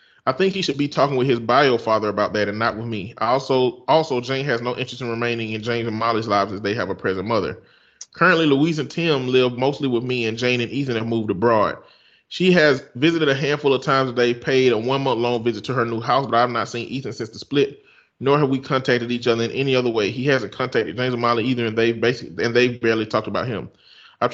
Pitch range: 115-130 Hz